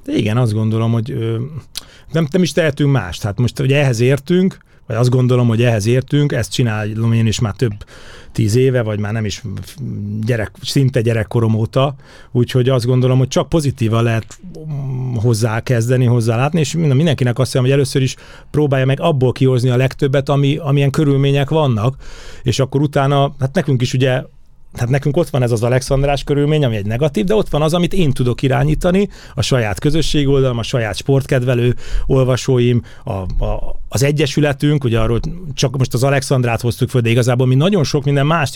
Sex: male